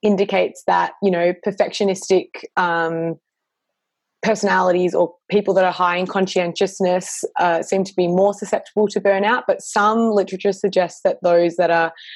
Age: 20-39